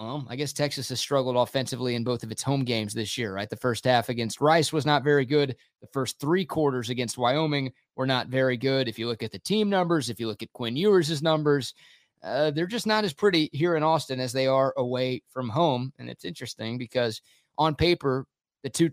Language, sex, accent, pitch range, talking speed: English, male, American, 125-155 Hz, 230 wpm